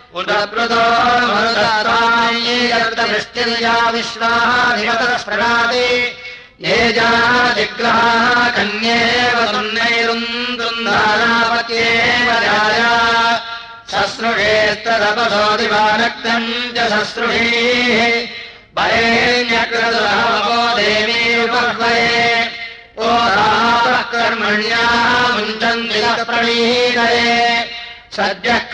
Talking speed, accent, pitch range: 50 wpm, Indian, 230-235 Hz